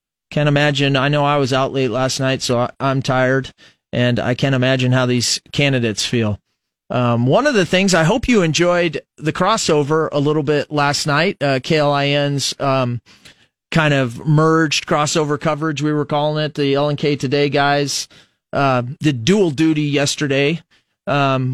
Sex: male